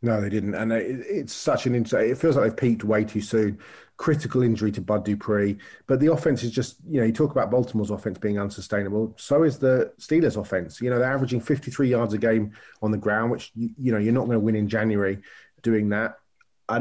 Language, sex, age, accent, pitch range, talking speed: English, male, 30-49, British, 105-120 Hz, 230 wpm